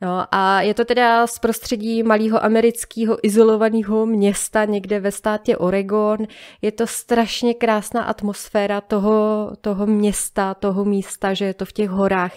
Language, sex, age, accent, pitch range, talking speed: Czech, female, 20-39, native, 185-215 Hz, 150 wpm